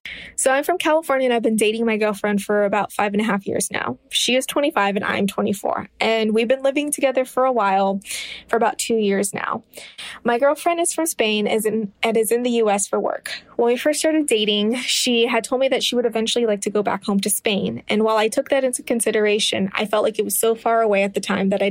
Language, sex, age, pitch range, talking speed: English, female, 20-39, 205-245 Hz, 245 wpm